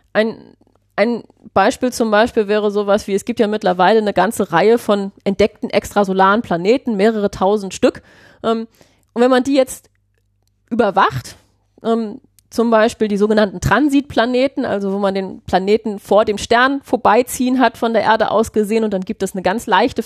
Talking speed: 170 wpm